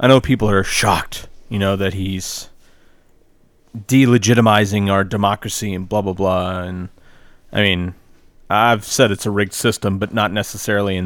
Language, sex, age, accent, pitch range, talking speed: English, male, 30-49, American, 95-110 Hz, 155 wpm